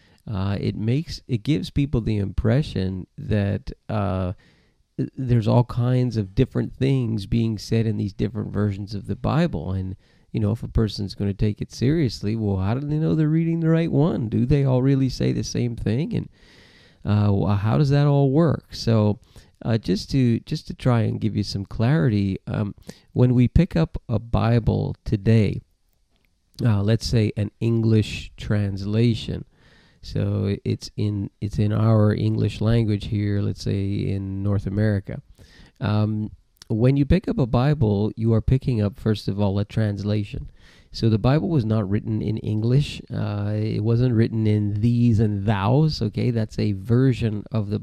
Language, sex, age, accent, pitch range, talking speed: English, male, 40-59, American, 105-125 Hz, 175 wpm